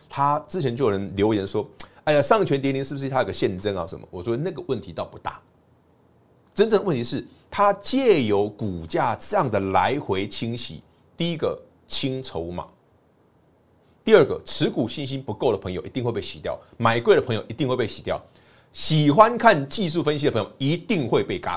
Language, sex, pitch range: Chinese, male, 100-150 Hz